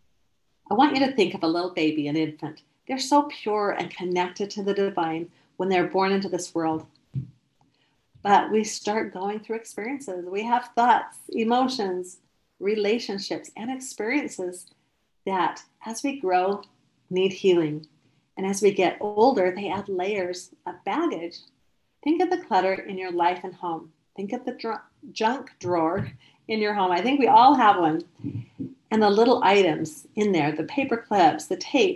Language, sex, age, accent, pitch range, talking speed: English, female, 40-59, American, 175-230 Hz, 165 wpm